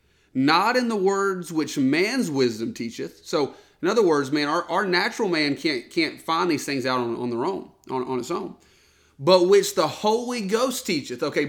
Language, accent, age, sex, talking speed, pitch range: English, American, 30-49, male, 200 wpm, 130-195 Hz